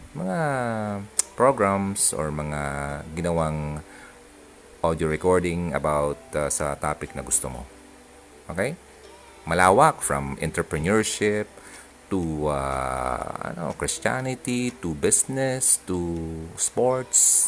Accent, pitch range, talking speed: native, 70-100 Hz, 90 wpm